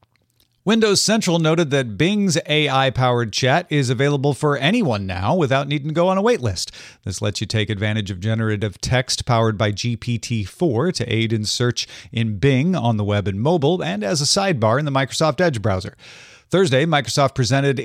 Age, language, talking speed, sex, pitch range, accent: 40-59, English, 180 wpm, male, 115-160 Hz, American